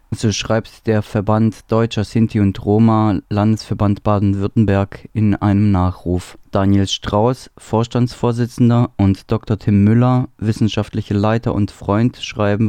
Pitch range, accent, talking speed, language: 100-115 Hz, German, 120 wpm, German